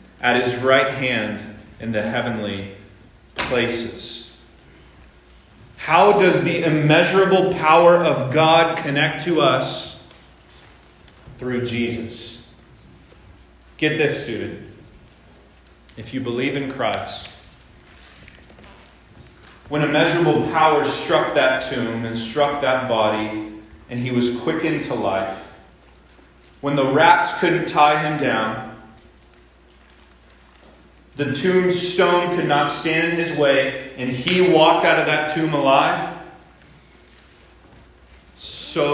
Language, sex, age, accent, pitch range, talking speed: English, male, 30-49, American, 110-155 Hz, 105 wpm